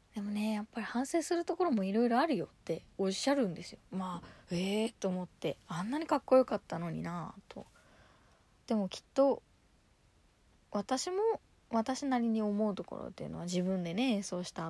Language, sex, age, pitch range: Japanese, female, 20-39, 175-260 Hz